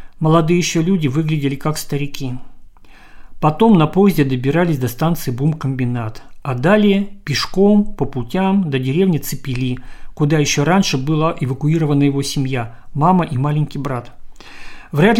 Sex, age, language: male, 50-69, Russian